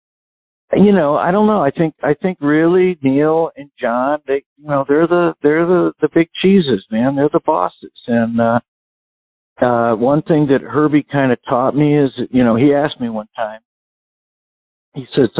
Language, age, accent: English, 60-79, American